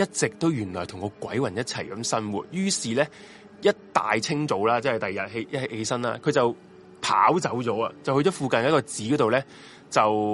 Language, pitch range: Chinese, 110-165 Hz